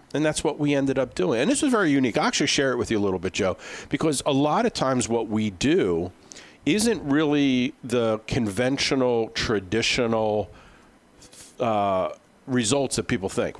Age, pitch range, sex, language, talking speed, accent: 50-69, 105-140 Hz, male, English, 175 wpm, American